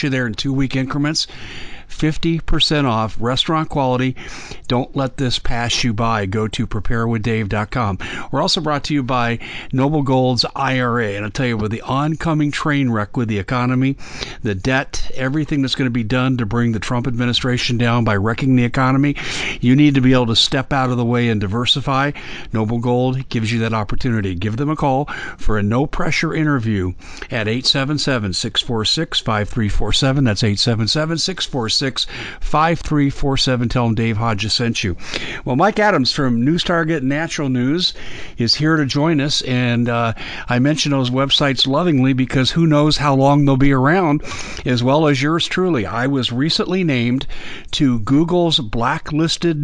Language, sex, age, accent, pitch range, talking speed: English, male, 50-69, American, 115-145 Hz, 170 wpm